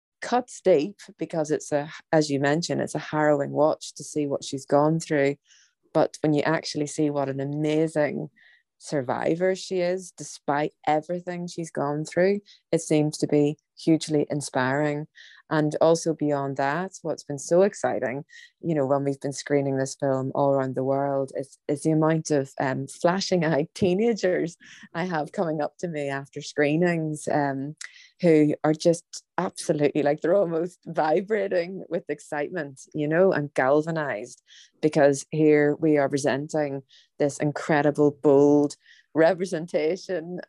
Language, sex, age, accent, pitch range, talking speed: English, female, 20-39, British, 145-170 Hz, 150 wpm